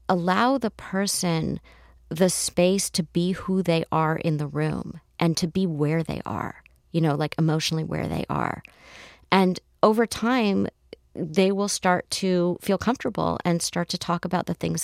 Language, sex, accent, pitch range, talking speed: English, female, American, 165-195 Hz, 170 wpm